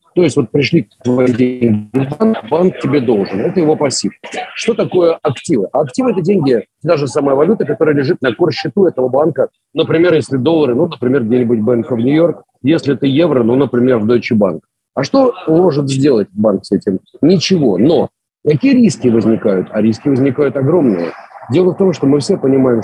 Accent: native